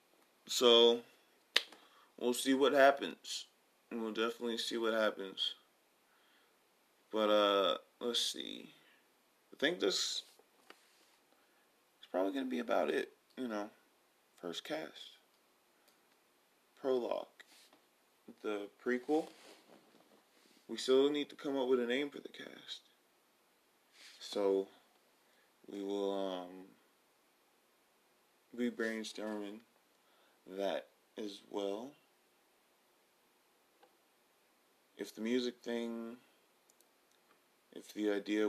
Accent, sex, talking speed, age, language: American, male, 90 wpm, 20-39, English